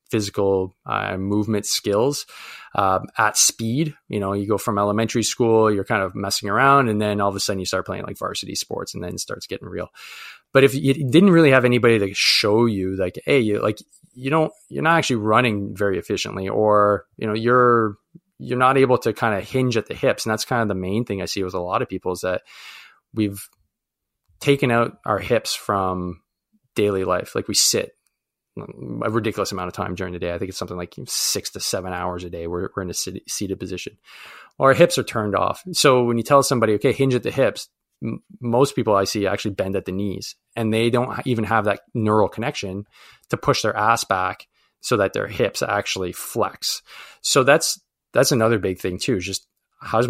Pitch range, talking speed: 95-120 Hz, 215 wpm